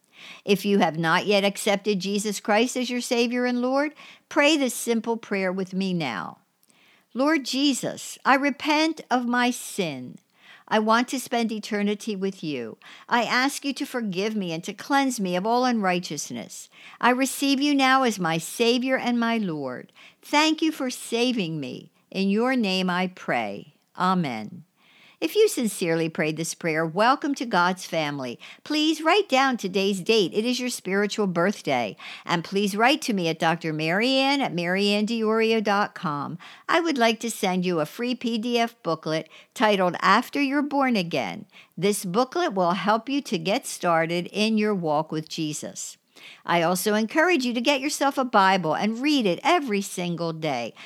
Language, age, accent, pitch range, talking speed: English, 60-79, American, 180-255 Hz, 165 wpm